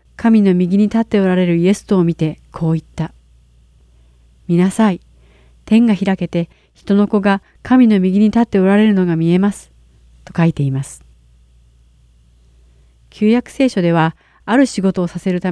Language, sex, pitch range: Japanese, female, 155-205 Hz